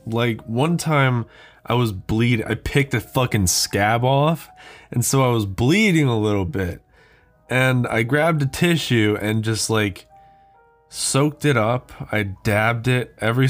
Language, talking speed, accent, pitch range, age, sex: English, 155 wpm, American, 110-155 Hz, 20-39, male